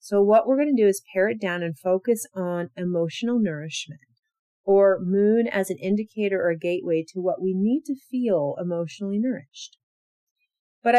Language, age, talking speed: English, 30-49, 170 wpm